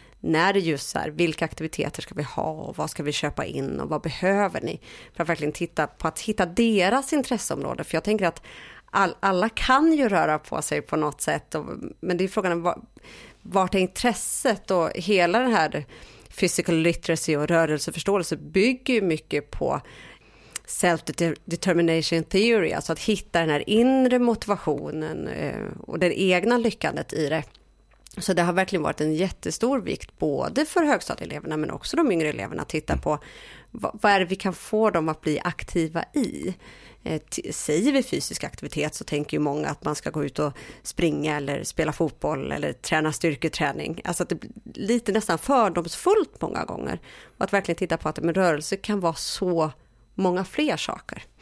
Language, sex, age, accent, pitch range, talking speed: Swedish, female, 30-49, native, 160-210 Hz, 180 wpm